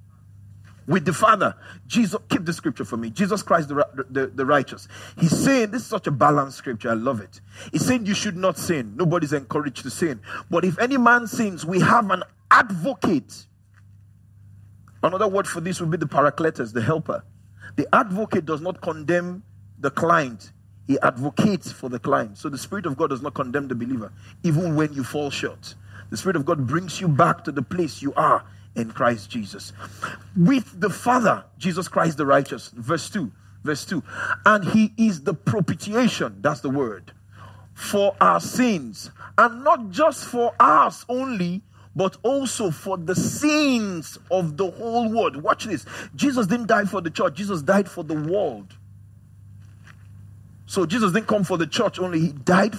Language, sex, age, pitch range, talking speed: English, male, 40-59, 120-195 Hz, 180 wpm